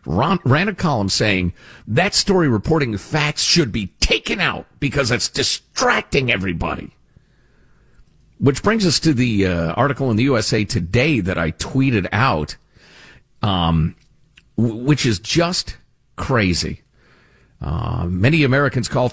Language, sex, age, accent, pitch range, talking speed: English, male, 50-69, American, 95-135 Hz, 130 wpm